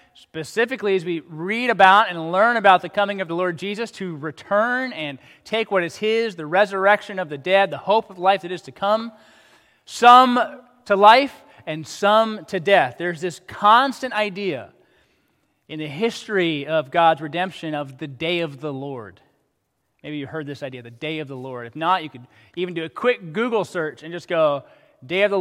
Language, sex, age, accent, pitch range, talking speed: English, male, 20-39, American, 160-210 Hz, 195 wpm